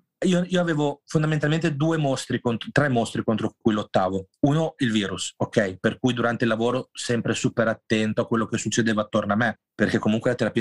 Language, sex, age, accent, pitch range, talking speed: Italian, male, 30-49, native, 110-135 Hz, 185 wpm